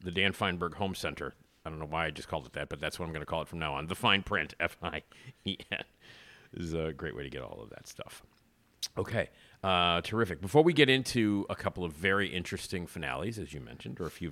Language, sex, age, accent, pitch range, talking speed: English, male, 40-59, American, 75-95 Hz, 245 wpm